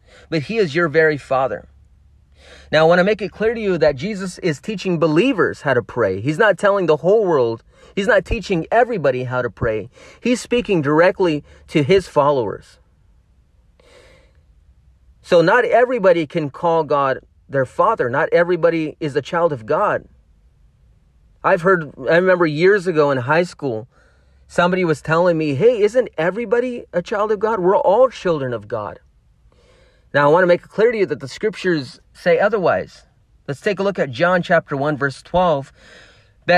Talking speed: 175 wpm